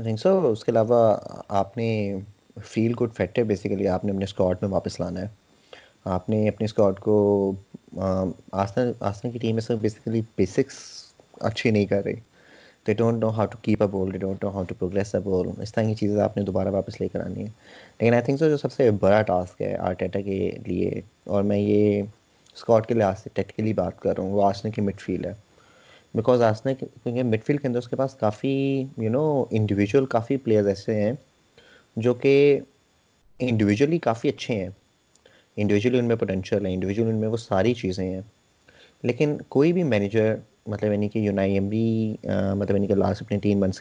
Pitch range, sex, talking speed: 100-120 Hz, male, 190 wpm